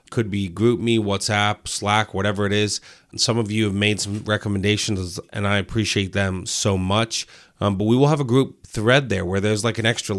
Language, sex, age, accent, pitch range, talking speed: English, male, 30-49, American, 100-115 Hz, 210 wpm